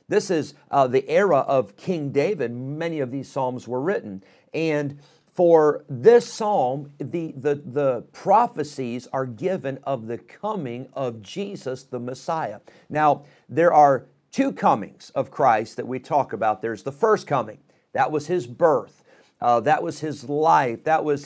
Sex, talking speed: male, 160 wpm